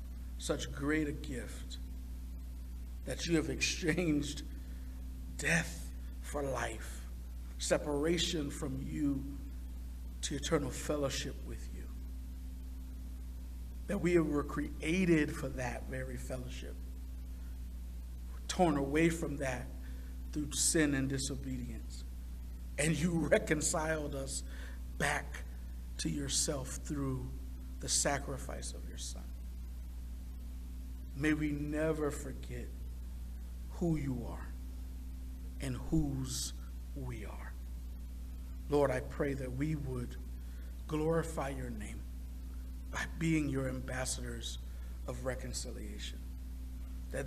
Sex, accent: male, American